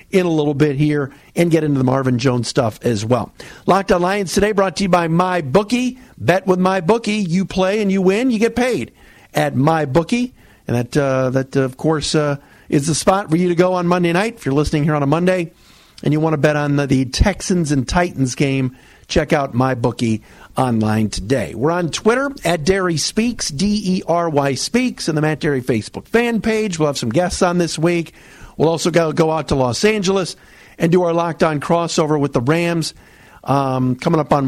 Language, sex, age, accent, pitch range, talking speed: English, male, 50-69, American, 130-180 Hz, 220 wpm